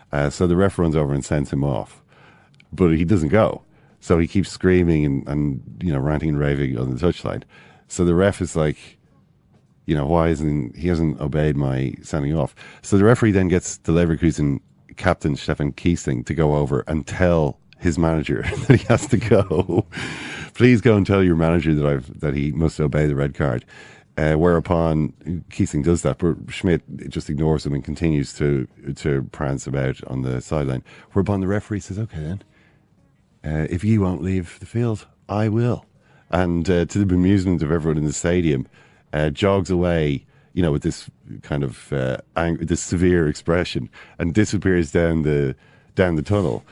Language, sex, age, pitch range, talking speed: English, male, 40-59, 75-95 Hz, 185 wpm